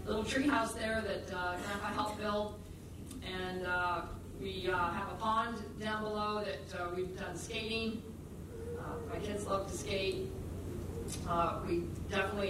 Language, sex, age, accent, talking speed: English, female, 50-69, American, 150 wpm